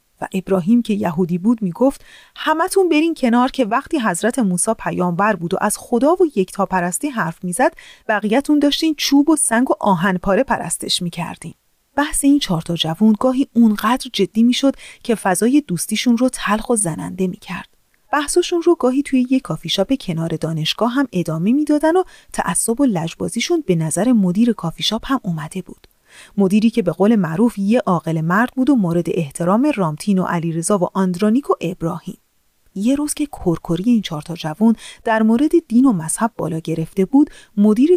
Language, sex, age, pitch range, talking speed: Persian, female, 30-49, 180-270 Hz, 175 wpm